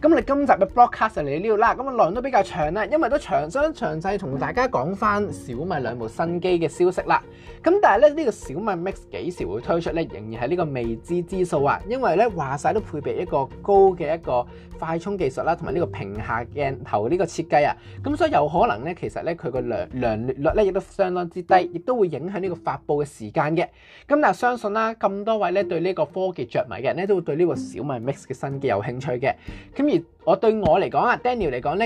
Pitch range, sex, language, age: 155-225 Hz, male, Chinese, 20-39